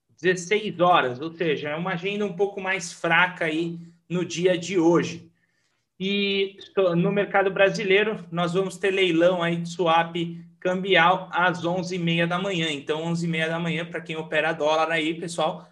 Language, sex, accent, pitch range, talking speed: Portuguese, male, Brazilian, 170-200 Hz, 160 wpm